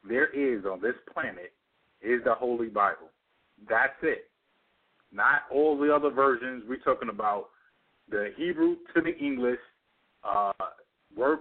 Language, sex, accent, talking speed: English, male, American, 135 wpm